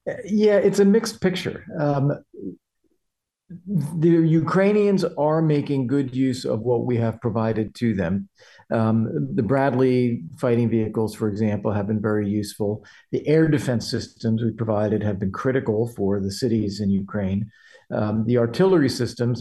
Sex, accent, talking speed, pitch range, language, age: male, American, 150 wpm, 110-135 Hz, English, 50-69